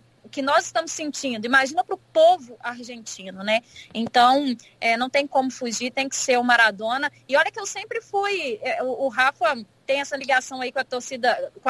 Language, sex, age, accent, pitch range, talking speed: Portuguese, female, 20-39, Brazilian, 240-295 Hz, 190 wpm